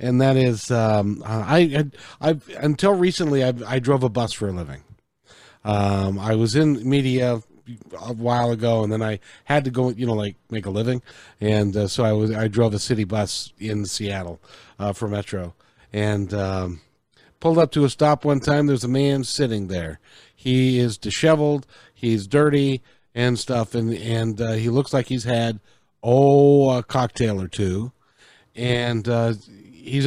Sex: male